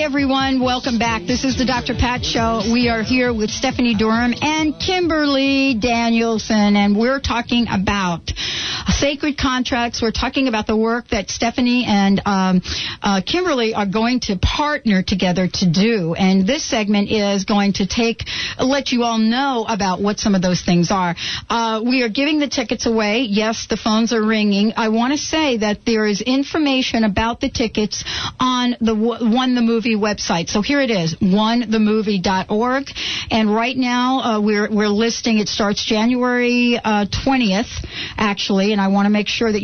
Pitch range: 205-250 Hz